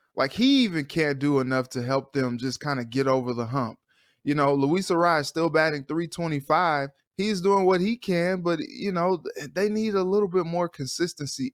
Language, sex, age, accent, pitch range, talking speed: English, male, 20-39, American, 135-175 Hz, 215 wpm